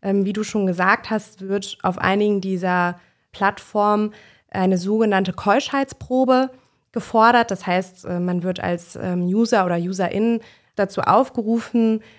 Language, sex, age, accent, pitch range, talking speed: German, female, 20-39, German, 180-220 Hz, 120 wpm